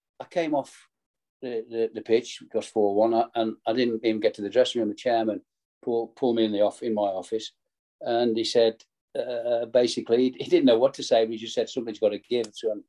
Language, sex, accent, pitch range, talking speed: English, male, British, 105-135 Hz, 235 wpm